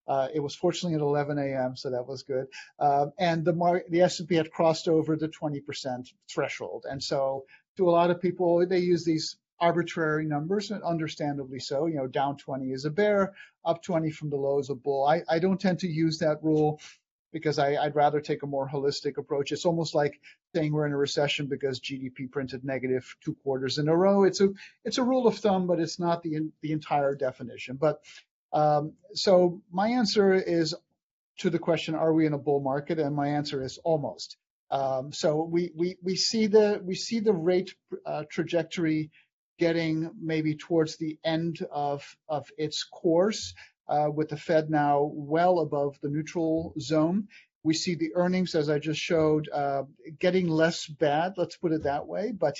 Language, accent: English, American